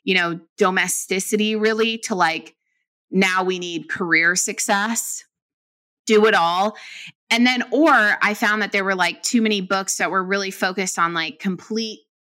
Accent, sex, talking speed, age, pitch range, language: American, female, 160 wpm, 20-39, 185-235 Hz, English